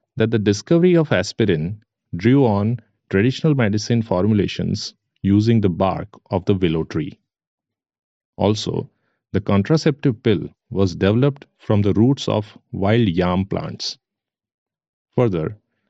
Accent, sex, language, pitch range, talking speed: Indian, male, English, 95-120 Hz, 115 wpm